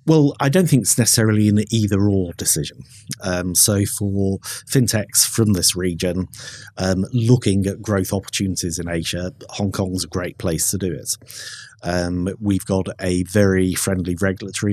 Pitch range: 90-105 Hz